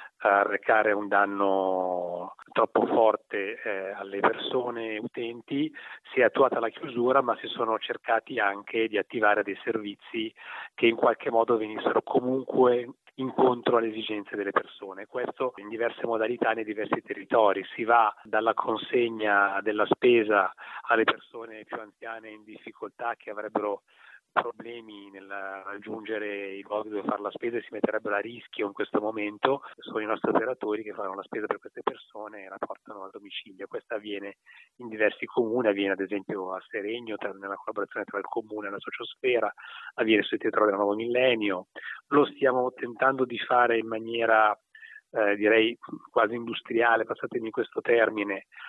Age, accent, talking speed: 30-49, native, 155 wpm